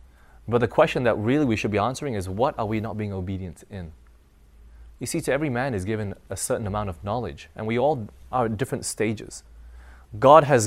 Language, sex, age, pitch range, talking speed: English, male, 20-39, 70-115 Hz, 215 wpm